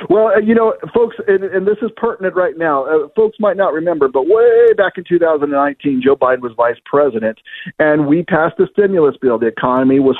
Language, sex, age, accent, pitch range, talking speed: English, male, 50-69, American, 140-205 Hz, 205 wpm